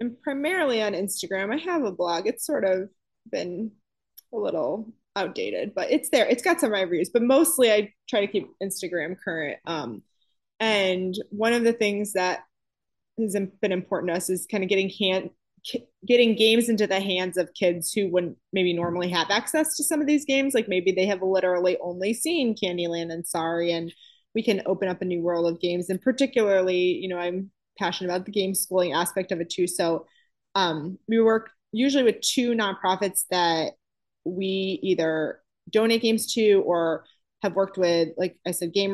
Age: 20-39